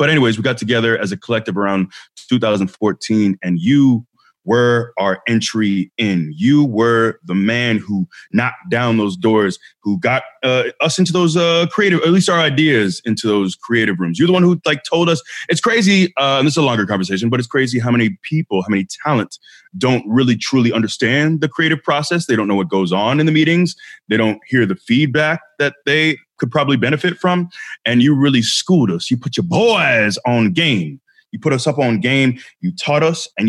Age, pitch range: 20-39, 105-155 Hz